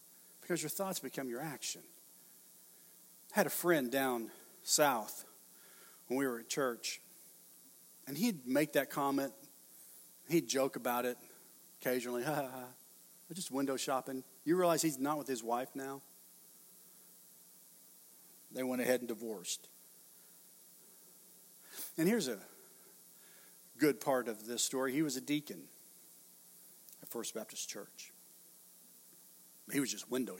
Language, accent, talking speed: English, American, 125 wpm